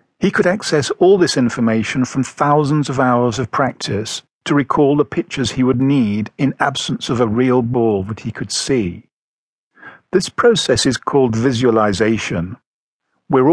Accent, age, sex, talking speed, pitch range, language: British, 50-69, male, 155 wpm, 115-150 Hz, English